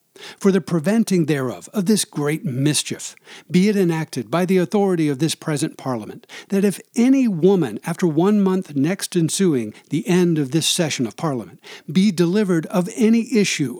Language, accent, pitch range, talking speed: English, American, 145-185 Hz, 170 wpm